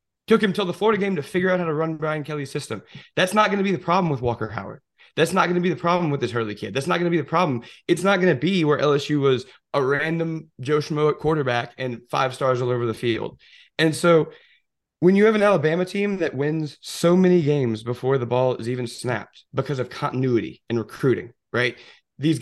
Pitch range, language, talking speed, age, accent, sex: 125-170 Hz, English, 240 wpm, 20-39, American, male